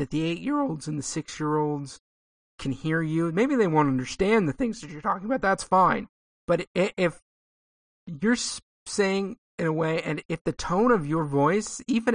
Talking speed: 180 wpm